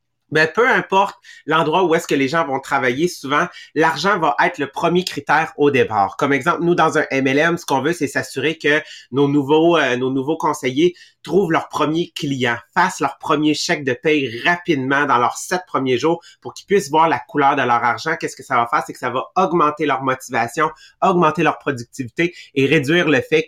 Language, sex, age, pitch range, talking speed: English, male, 30-49, 135-165 Hz, 210 wpm